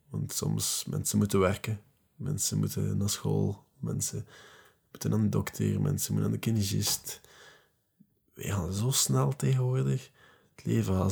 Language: Dutch